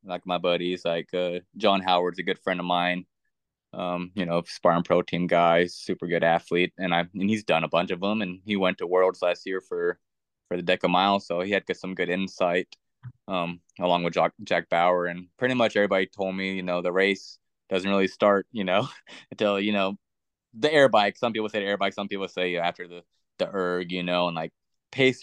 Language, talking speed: English, 235 wpm